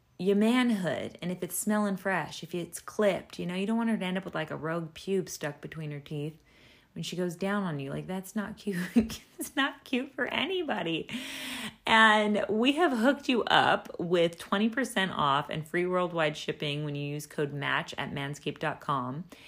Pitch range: 155-205 Hz